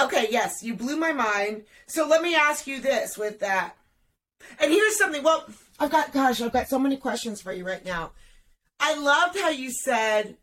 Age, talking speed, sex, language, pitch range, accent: 30-49, 200 wpm, female, English, 220-275 Hz, American